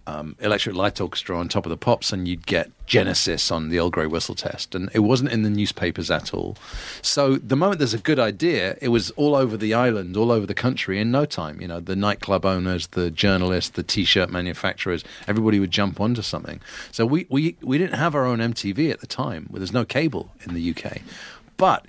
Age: 40-59